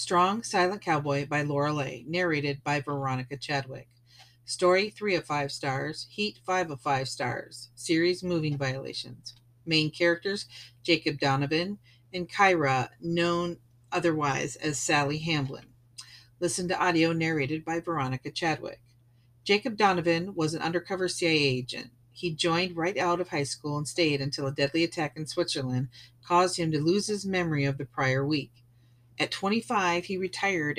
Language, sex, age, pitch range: English, female, 40-59, 130-175 Hz